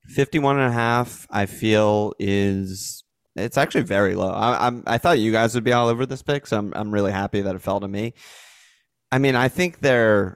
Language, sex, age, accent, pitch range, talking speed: English, male, 30-49, American, 100-115 Hz, 225 wpm